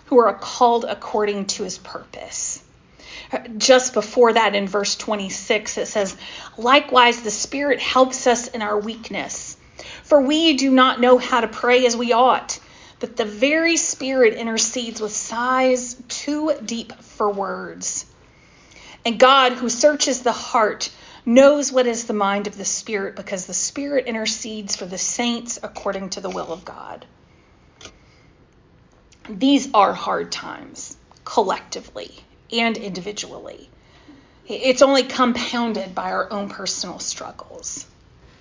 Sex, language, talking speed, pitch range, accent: female, English, 135 wpm, 215-265 Hz, American